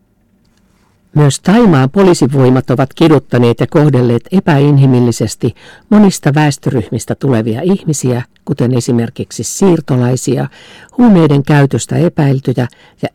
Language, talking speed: Finnish, 85 wpm